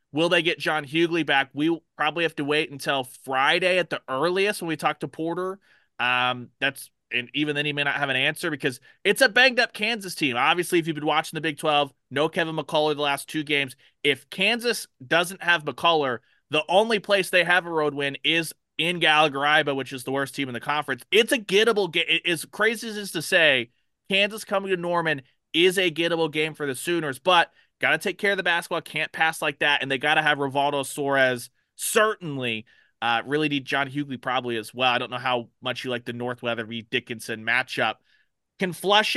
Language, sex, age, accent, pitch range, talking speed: English, male, 30-49, American, 135-170 Hz, 220 wpm